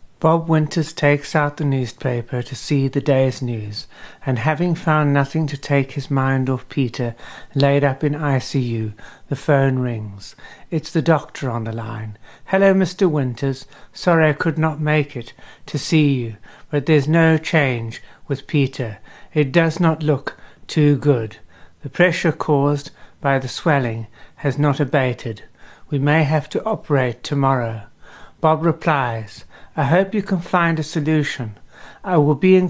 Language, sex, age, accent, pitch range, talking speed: English, male, 60-79, British, 125-155 Hz, 160 wpm